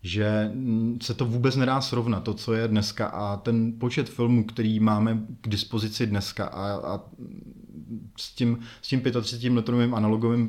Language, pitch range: Czech, 105-115 Hz